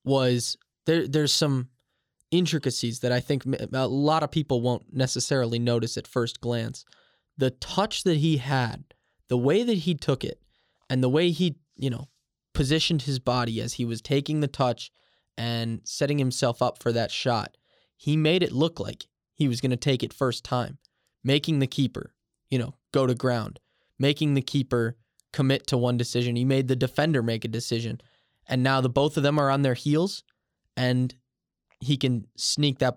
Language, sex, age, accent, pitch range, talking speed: English, male, 10-29, American, 120-145 Hz, 185 wpm